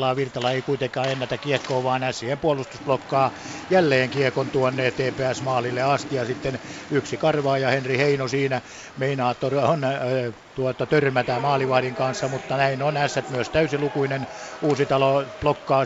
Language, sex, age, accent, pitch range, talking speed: Finnish, male, 60-79, native, 130-140 Hz, 135 wpm